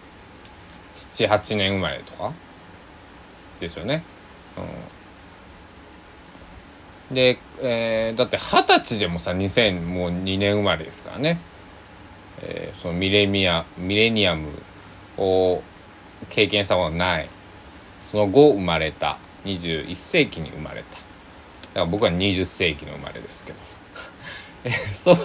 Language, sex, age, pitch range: Japanese, male, 20-39, 85-100 Hz